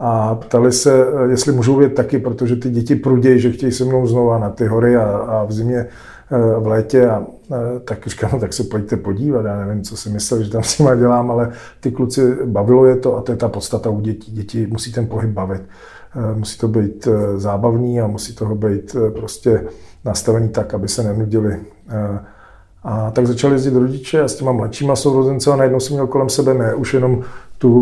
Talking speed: 205 wpm